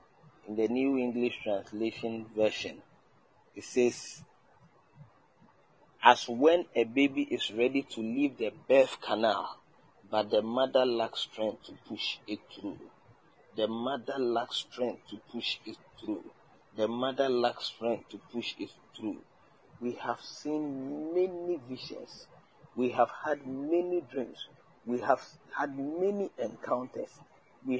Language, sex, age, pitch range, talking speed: English, male, 40-59, 120-160 Hz, 130 wpm